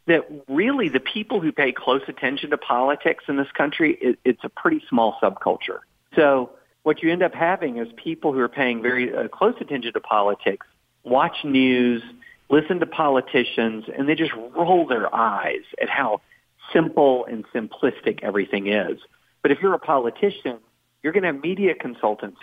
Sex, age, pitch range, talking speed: male, 40-59, 120-175 Hz, 170 wpm